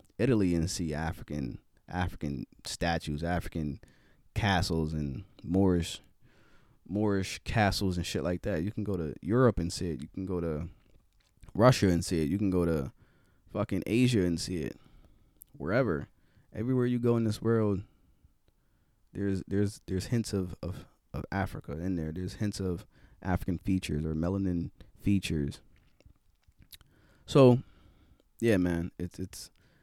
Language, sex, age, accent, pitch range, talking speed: English, male, 20-39, American, 80-100 Hz, 145 wpm